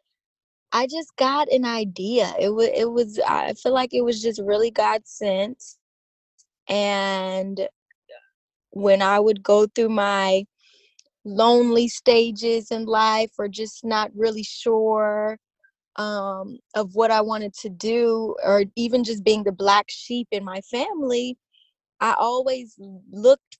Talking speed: 135 wpm